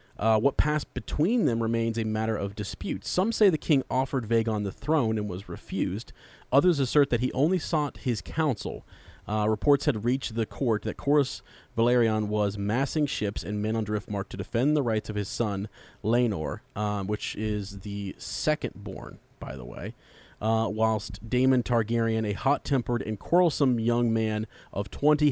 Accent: American